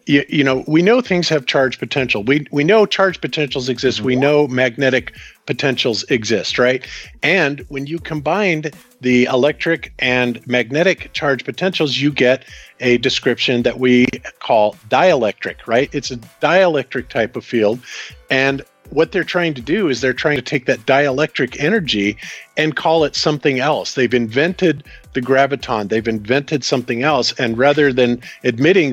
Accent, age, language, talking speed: American, 50-69, English, 160 wpm